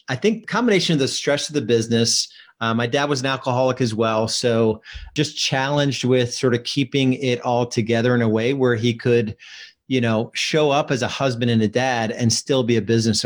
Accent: American